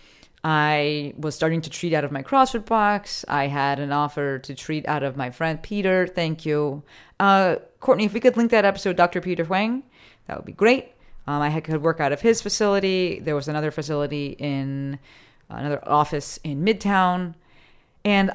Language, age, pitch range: English, 30-49, 145-200 Hz